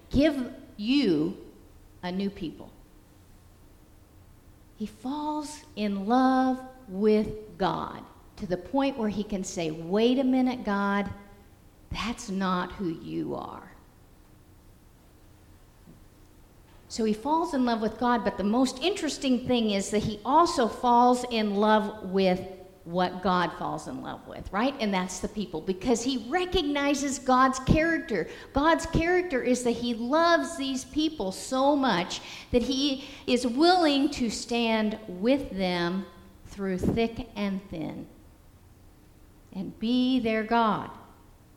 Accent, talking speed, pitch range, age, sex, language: American, 130 wpm, 185-270 Hz, 50-69, female, English